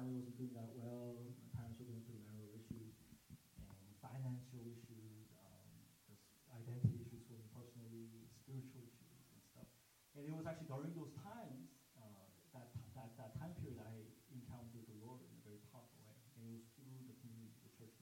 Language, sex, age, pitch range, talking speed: English, male, 30-49, 115-135 Hz, 185 wpm